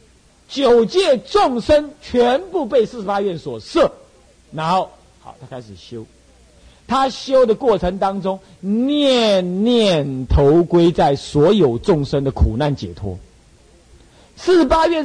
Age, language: 50-69, Chinese